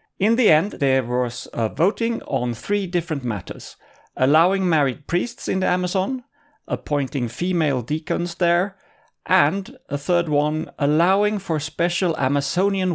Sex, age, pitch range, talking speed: male, 40-59, 140-185 Hz, 135 wpm